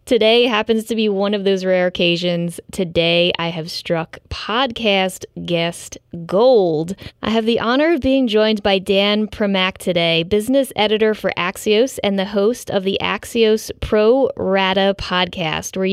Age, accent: 20-39, American